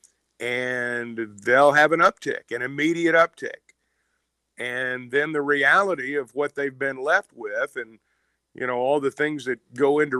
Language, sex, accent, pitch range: English, male, American, 125-165 Hz